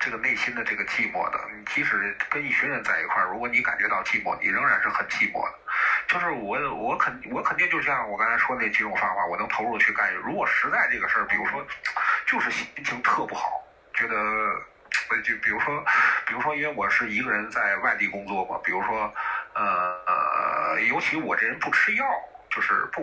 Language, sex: Chinese, male